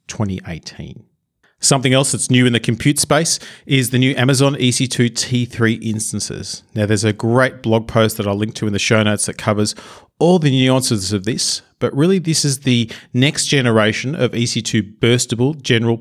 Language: English